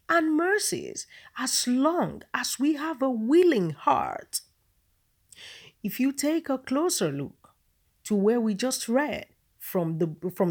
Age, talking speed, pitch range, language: 40-59, 135 wpm, 210-300 Hz, English